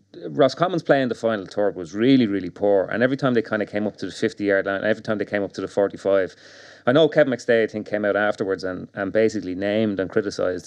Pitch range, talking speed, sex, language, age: 95-115 Hz, 255 wpm, male, English, 30-49